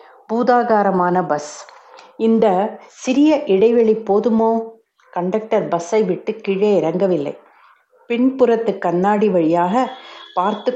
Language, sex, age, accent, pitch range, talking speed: Tamil, female, 60-79, native, 185-230 Hz, 85 wpm